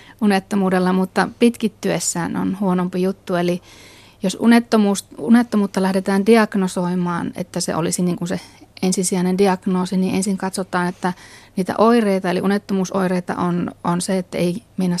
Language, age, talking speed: Finnish, 30-49, 125 wpm